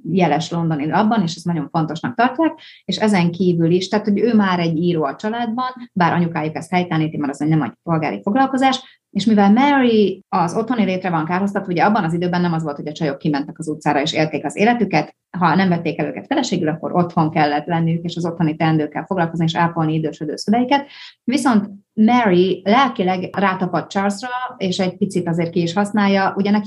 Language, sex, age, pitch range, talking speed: Hungarian, female, 30-49, 165-200 Hz, 200 wpm